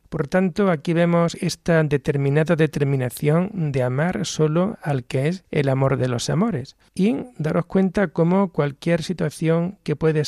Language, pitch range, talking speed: Spanish, 140-170 Hz, 150 wpm